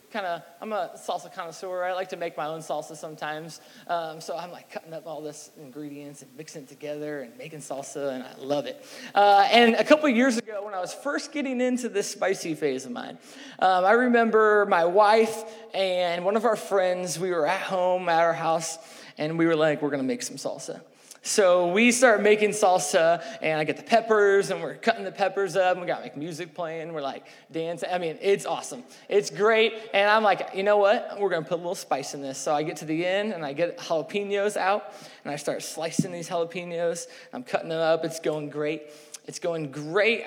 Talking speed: 225 wpm